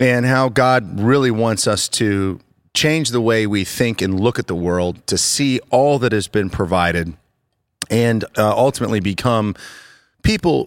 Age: 30-49